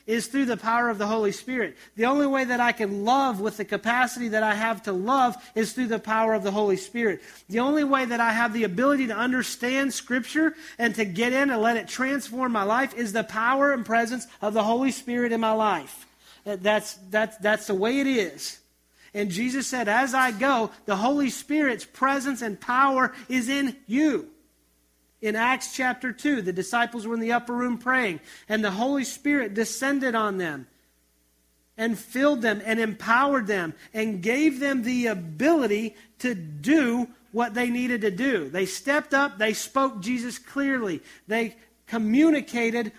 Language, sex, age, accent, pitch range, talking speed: English, male, 40-59, American, 215-255 Hz, 185 wpm